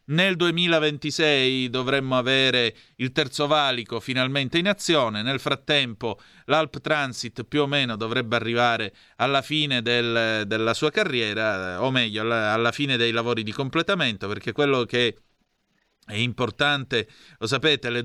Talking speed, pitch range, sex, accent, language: 135 wpm, 110-135 Hz, male, native, Italian